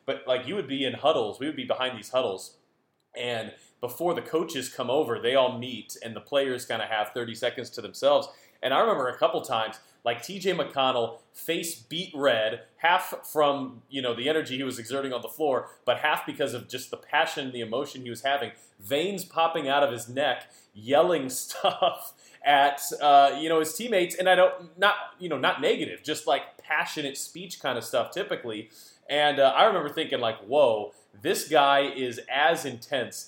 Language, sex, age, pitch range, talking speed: English, male, 20-39, 120-150 Hz, 200 wpm